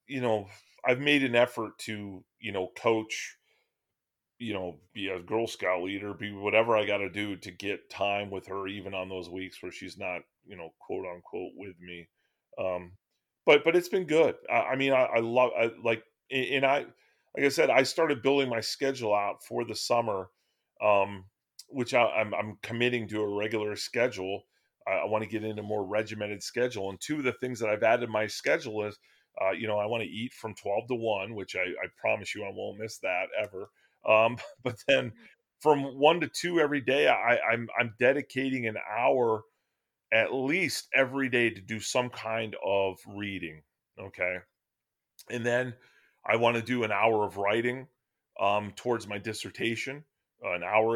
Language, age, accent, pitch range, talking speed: English, 30-49, American, 100-125 Hz, 195 wpm